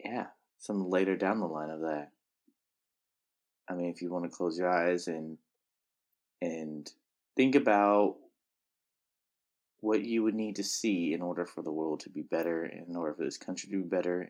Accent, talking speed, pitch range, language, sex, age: American, 180 wpm, 90-120 Hz, English, male, 20-39